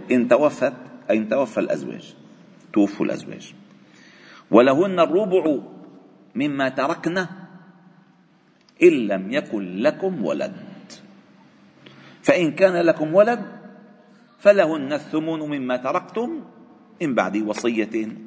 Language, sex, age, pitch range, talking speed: Arabic, male, 50-69, 130-215 Hz, 90 wpm